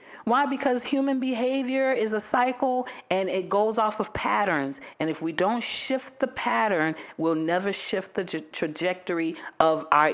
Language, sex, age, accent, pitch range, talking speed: English, female, 40-59, American, 145-190 Hz, 160 wpm